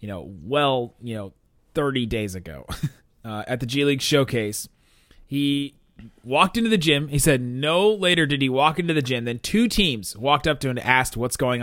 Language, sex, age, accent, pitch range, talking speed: English, male, 30-49, American, 120-160 Hz, 205 wpm